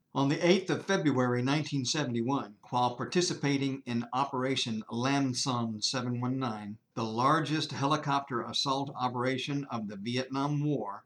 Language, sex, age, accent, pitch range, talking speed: English, male, 50-69, American, 125-155 Hz, 120 wpm